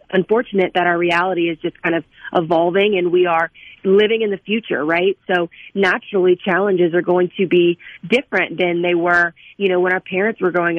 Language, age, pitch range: English, 30-49, 175-200 Hz